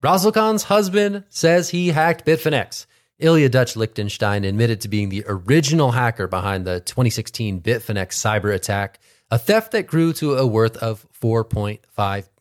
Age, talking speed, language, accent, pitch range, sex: 30-49, 150 wpm, English, American, 100-135 Hz, male